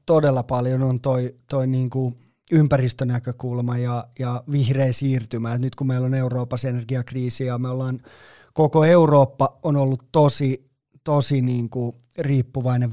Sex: male